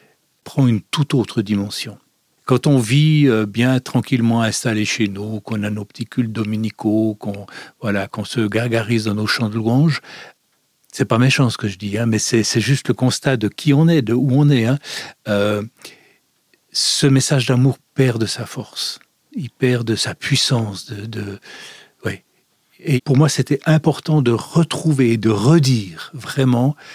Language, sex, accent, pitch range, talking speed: French, male, French, 115-140 Hz, 175 wpm